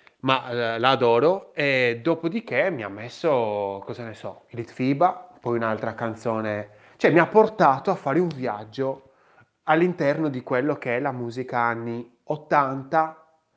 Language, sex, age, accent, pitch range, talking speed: Italian, male, 20-39, native, 115-150 Hz, 140 wpm